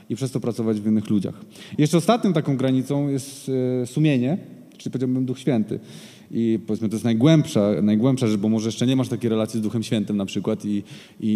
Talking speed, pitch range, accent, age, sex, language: 200 wpm, 110-125 Hz, native, 20-39, male, Polish